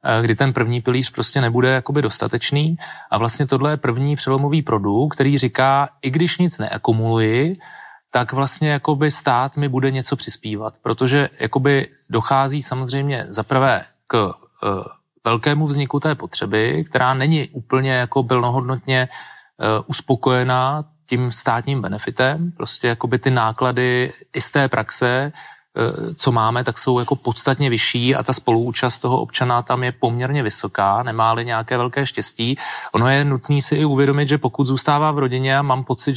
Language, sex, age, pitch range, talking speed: Czech, male, 30-49, 120-140 Hz, 140 wpm